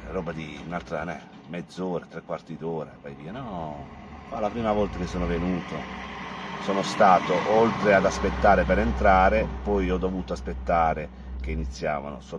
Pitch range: 75-95 Hz